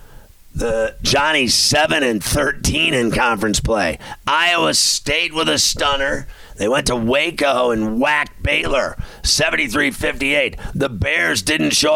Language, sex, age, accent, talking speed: English, male, 50-69, American, 130 wpm